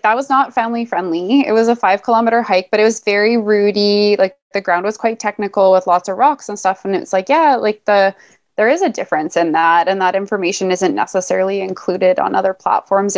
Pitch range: 185-235 Hz